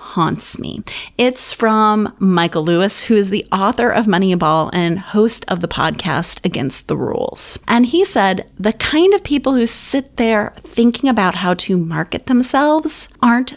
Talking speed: 165 wpm